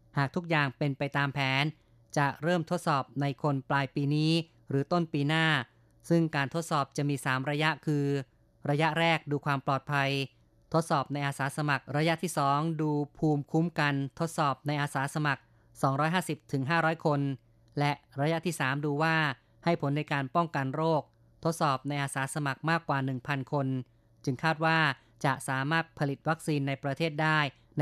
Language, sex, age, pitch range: Thai, female, 20-39, 135-160 Hz